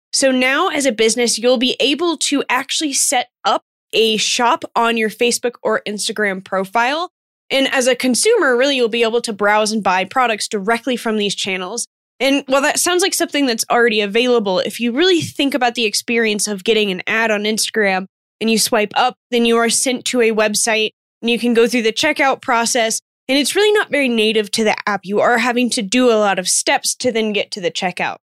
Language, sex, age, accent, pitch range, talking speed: English, female, 10-29, American, 215-270 Hz, 215 wpm